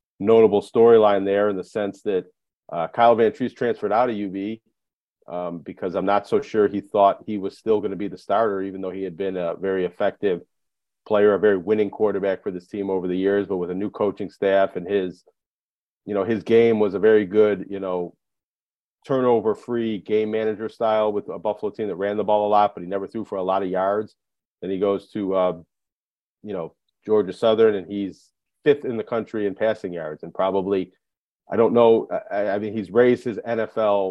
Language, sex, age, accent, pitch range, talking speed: English, male, 40-59, American, 95-105 Hz, 210 wpm